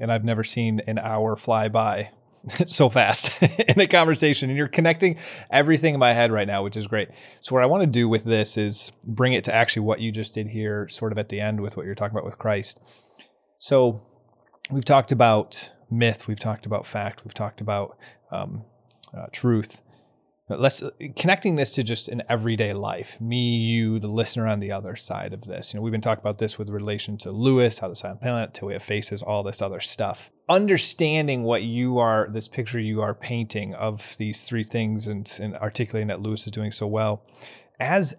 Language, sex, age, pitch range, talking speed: English, male, 20-39, 110-130 Hz, 210 wpm